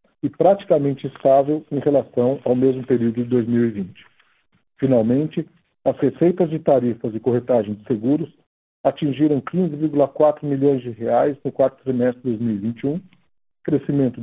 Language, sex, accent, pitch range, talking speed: Portuguese, male, Brazilian, 125-150 Hz, 125 wpm